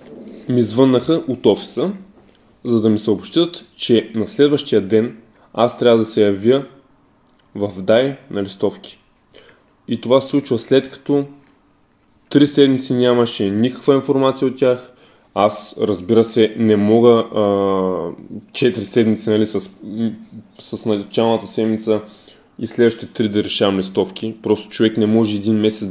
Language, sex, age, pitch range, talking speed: Bulgarian, male, 20-39, 105-145 Hz, 135 wpm